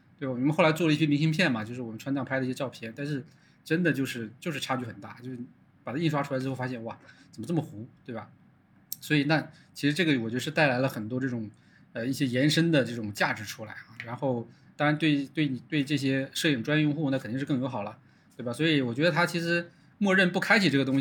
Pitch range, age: 125-155 Hz, 20-39